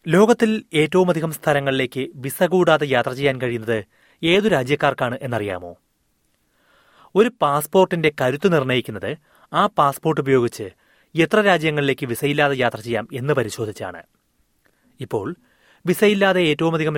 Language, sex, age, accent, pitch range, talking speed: Malayalam, male, 30-49, native, 130-170 Hz, 105 wpm